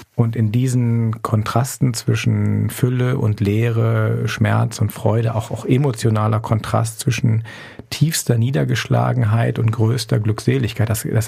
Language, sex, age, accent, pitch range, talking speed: German, male, 40-59, German, 110-125 Hz, 120 wpm